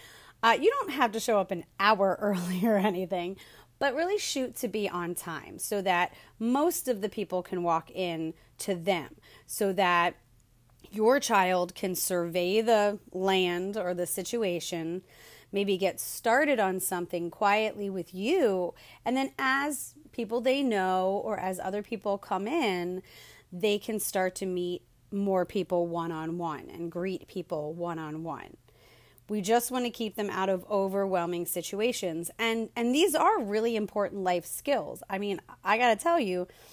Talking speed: 160 wpm